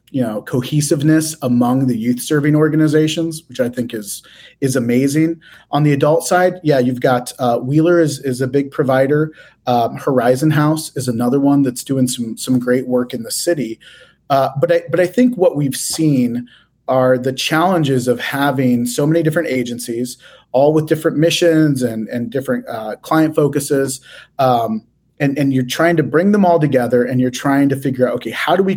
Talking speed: 190 wpm